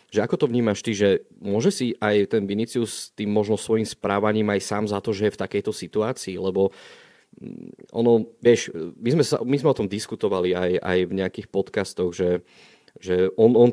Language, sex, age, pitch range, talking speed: Slovak, male, 30-49, 105-120 Hz, 195 wpm